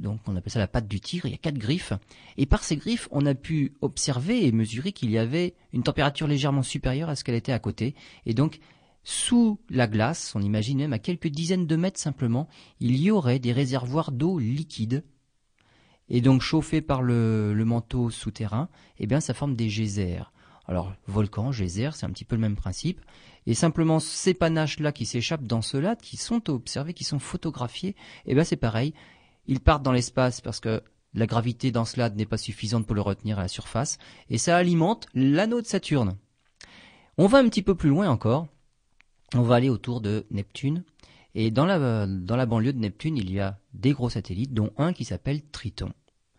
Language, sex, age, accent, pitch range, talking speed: French, male, 40-59, French, 110-150 Hz, 200 wpm